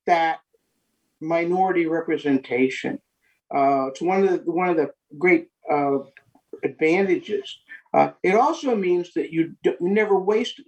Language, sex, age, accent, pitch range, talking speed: English, male, 60-79, American, 155-220 Hz, 130 wpm